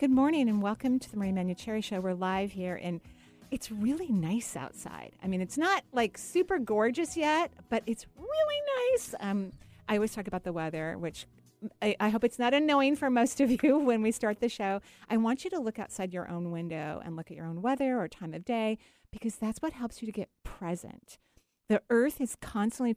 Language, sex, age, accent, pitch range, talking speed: English, female, 40-59, American, 175-240 Hz, 215 wpm